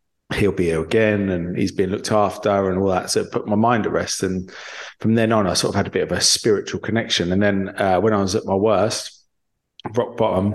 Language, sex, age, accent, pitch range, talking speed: English, male, 30-49, British, 95-110 Hz, 250 wpm